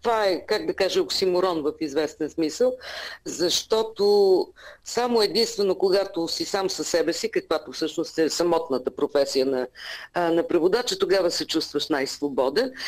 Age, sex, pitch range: 40-59, female, 165-240 Hz